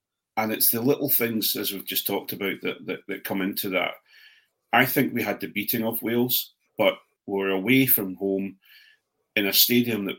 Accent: British